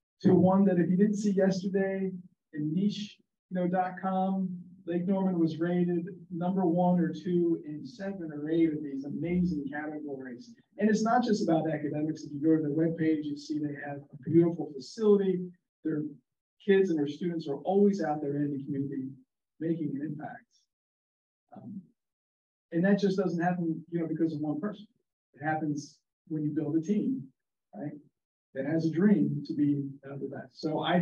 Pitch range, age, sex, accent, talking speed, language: 145-185 Hz, 50-69, male, American, 170 wpm, English